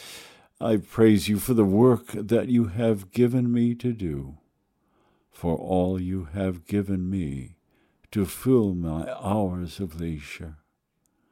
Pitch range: 85-110 Hz